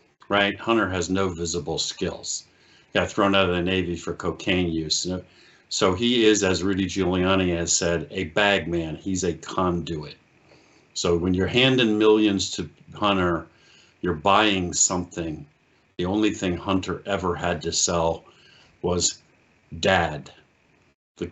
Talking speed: 140 wpm